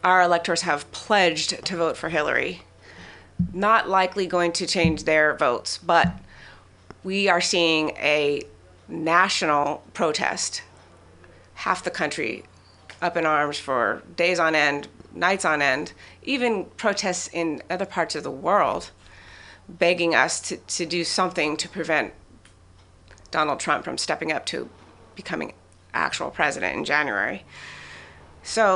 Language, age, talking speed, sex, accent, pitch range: English, 30-49, 130 wpm, female, American, 130-185 Hz